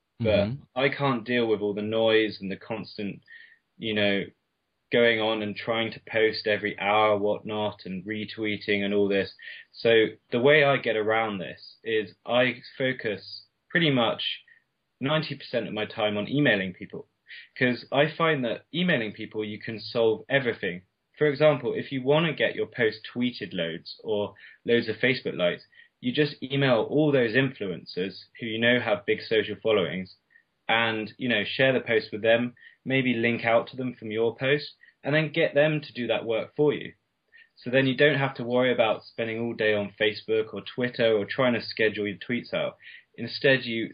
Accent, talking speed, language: British, 185 wpm, English